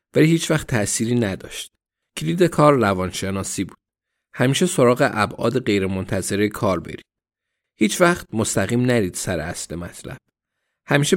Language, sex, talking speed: Persian, male, 125 wpm